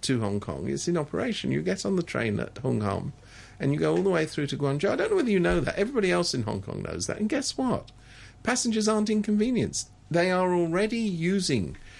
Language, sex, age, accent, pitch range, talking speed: English, male, 50-69, British, 100-135 Hz, 235 wpm